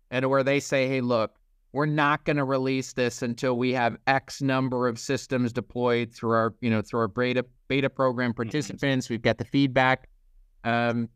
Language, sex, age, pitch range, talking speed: English, male, 30-49, 120-145 Hz, 190 wpm